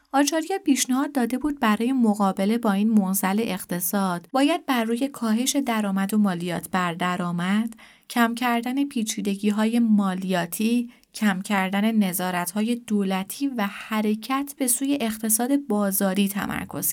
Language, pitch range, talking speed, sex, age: Persian, 195-245 Hz, 120 wpm, female, 30-49